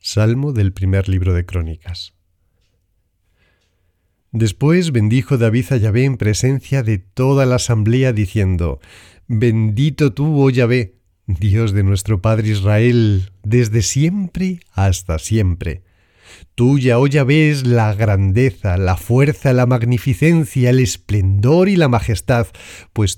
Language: Spanish